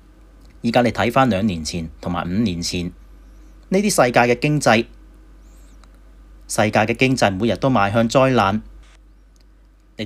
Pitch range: 100-130 Hz